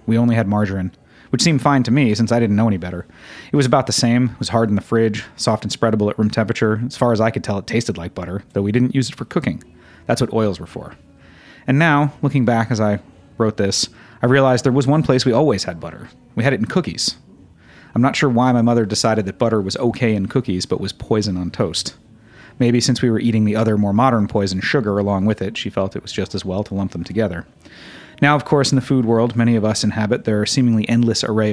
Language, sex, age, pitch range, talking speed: English, male, 30-49, 100-120 Hz, 255 wpm